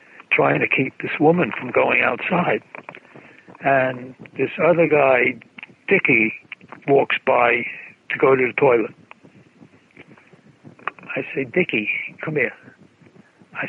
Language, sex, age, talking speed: English, male, 60-79, 115 wpm